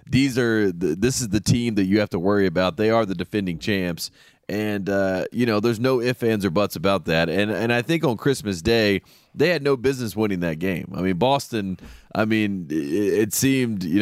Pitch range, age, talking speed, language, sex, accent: 95-120 Hz, 30-49, 225 wpm, English, male, American